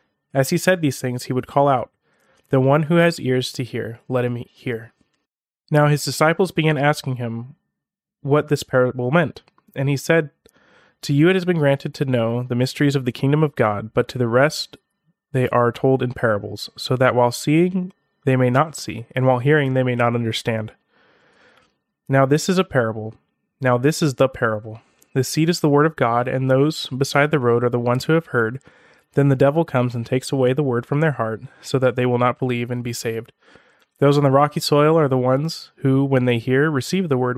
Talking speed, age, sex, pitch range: 215 wpm, 30-49, male, 120-150 Hz